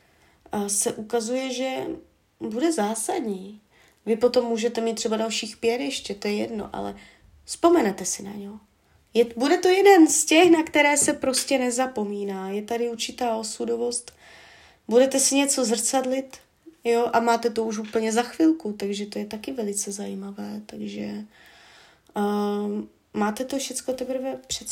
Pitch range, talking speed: 205-245 Hz, 145 wpm